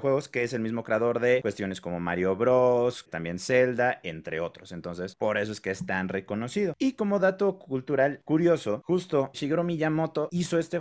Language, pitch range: Spanish, 100-140 Hz